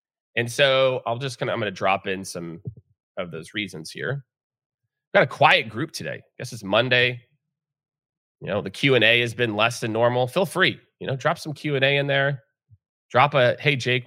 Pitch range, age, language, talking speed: 105-135 Hz, 30-49, English, 220 wpm